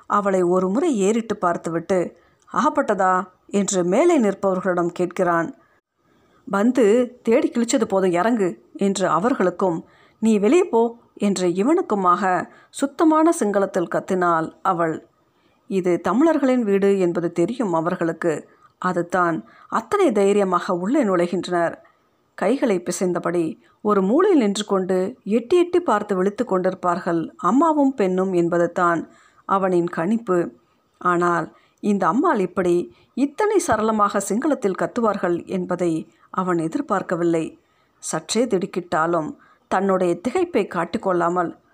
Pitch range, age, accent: 175-230 Hz, 50-69, native